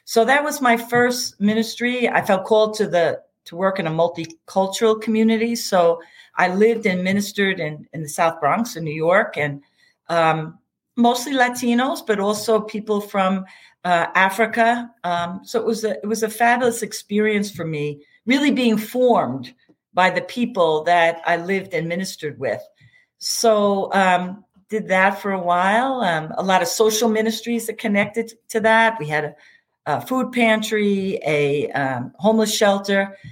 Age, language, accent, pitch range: 50-69, English, American, 175-230 Hz